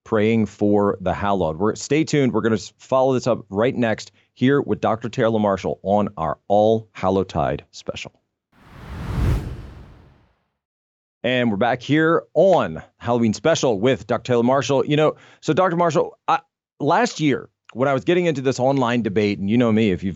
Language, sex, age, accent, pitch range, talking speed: English, male, 30-49, American, 105-135 Hz, 165 wpm